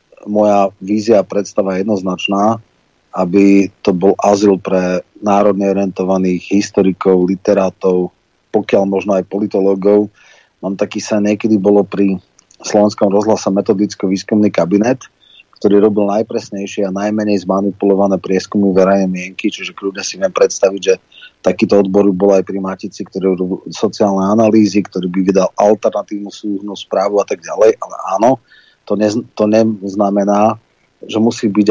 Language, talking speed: Slovak, 130 wpm